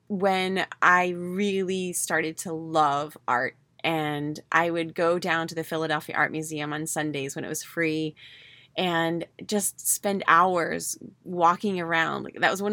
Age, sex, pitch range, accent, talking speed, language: 20-39, female, 160-210 Hz, American, 155 wpm, English